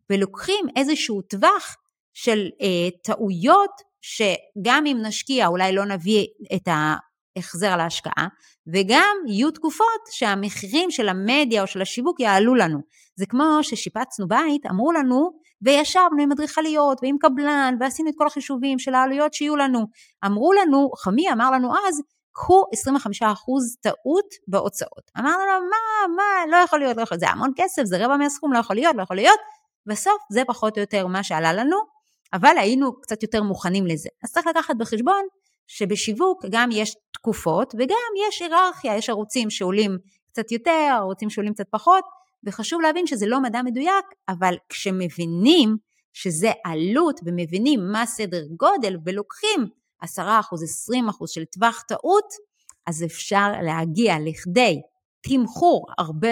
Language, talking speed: Hebrew, 145 wpm